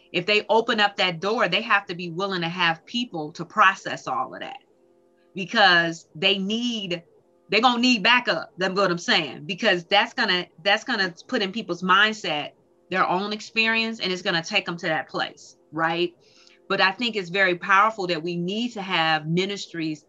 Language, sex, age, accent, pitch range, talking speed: English, female, 30-49, American, 170-205 Hz, 200 wpm